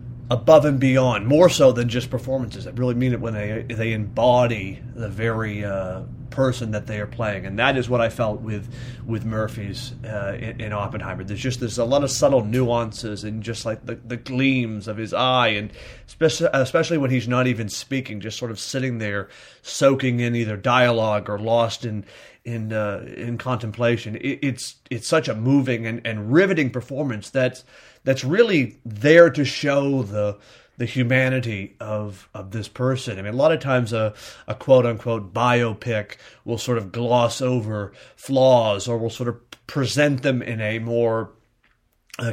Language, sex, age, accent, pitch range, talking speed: English, male, 30-49, American, 110-130 Hz, 180 wpm